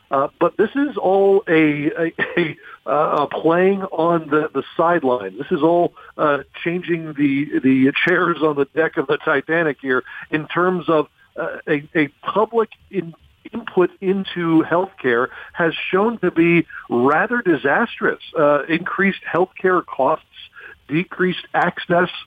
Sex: male